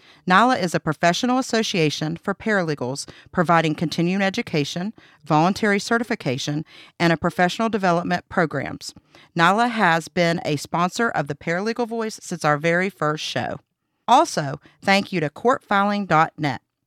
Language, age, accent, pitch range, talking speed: English, 50-69, American, 155-205 Hz, 130 wpm